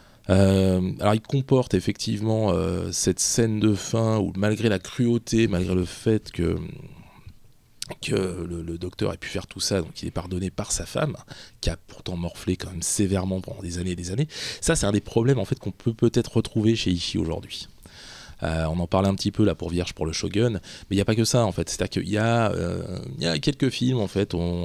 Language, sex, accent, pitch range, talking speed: French, male, French, 90-115 Hz, 230 wpm